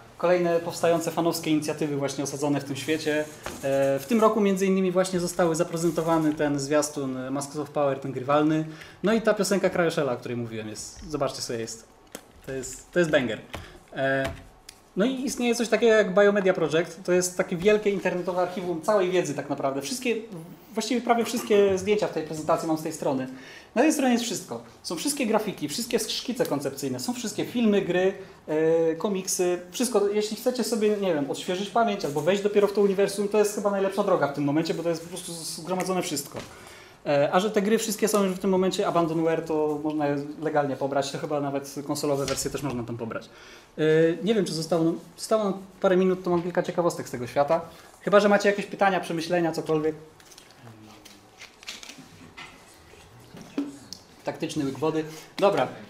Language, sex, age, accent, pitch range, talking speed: Polish, male, 20-39, native, 150-205 Hz, 175 wpm